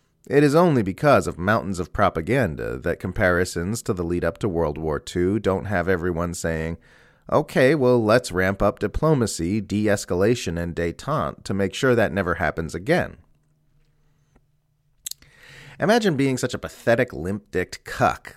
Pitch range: 90-125 Hz